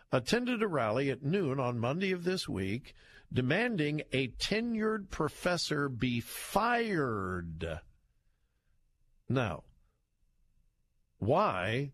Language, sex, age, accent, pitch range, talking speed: English, male, 50-69, American, 110-160 Hz, 90 wpm